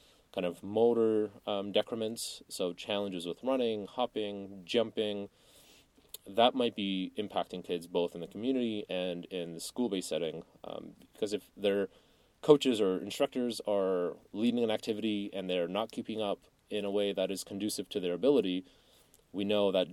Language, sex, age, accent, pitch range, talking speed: English, male, 30-49, American, 95-120 Hz, 160 wpm